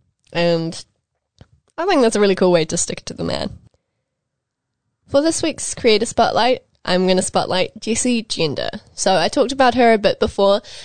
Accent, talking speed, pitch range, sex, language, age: Australian, 175 wpm, 170-245 Hz, female, English, 10-29